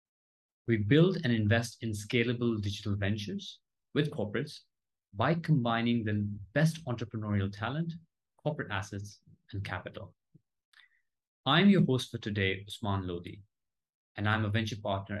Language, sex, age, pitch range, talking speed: English, male, 30-49, 100-120 Hz, 125 wpm